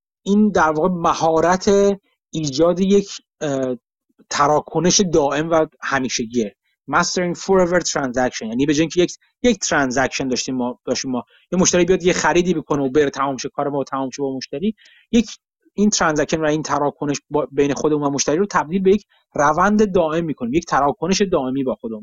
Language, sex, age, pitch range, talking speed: Persian, male, 30-49, 145-195 Hz, 170 wpm